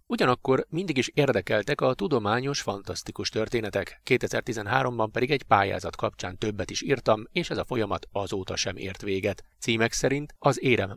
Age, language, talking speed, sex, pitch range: 30-49, Hungarian, 155 wpm, male, 100-130 Hz